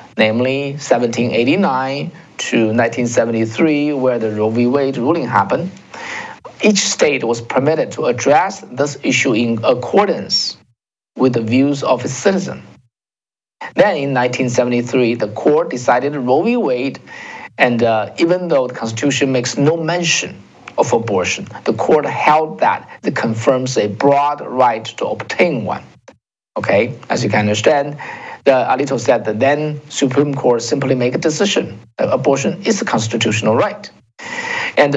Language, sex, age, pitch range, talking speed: English, male, 50-69, 115-150 Hz, 140 wpm